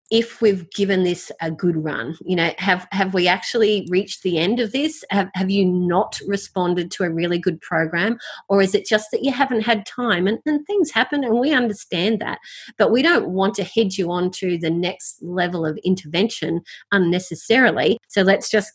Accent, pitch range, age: Australian, 160-200 Hz, 30-49